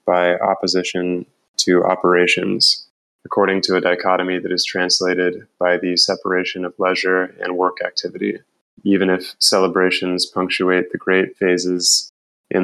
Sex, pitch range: male, 90-95 Hz